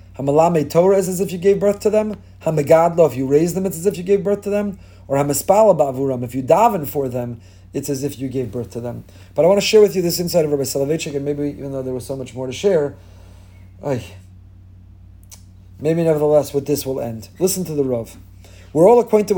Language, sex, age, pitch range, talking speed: English, male, 40-59, 120-175 Hz, 230 wpm